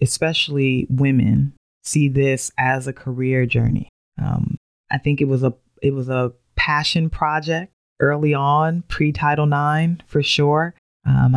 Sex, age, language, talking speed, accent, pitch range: female, 20-39, English, 135 wpm, American, 135-160 Hz